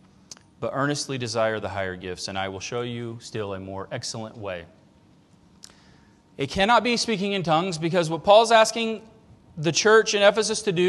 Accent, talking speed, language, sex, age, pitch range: American, 175 wpm, English, male, 40-59, 125-190 Hz